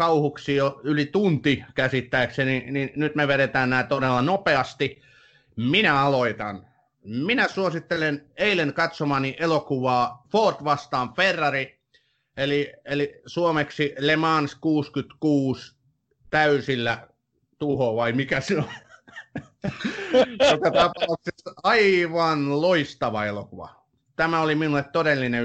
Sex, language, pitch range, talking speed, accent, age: male, Finnish, 120-145 Hz, 95 wpm, native, 30-49